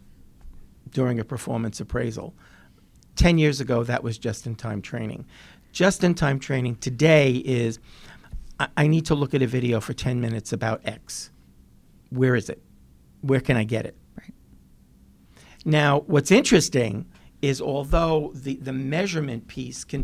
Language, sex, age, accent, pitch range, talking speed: English, male, 50-69, American, 110-150 Hz, 140 wpm